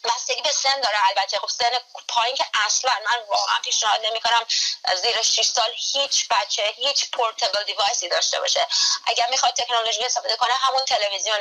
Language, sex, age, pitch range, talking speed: Persian, female, 30-49, 195-250 Hz, 165 wpm